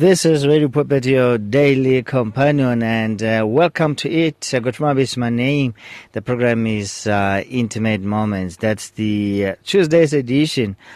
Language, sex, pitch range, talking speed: English, male, 105-125 Hz, 150 wpm